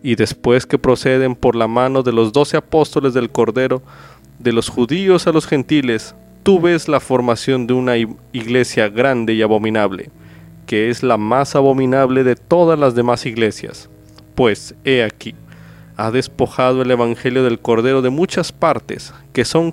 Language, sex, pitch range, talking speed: Spanish, male, 115-140 Hz, 160 wpm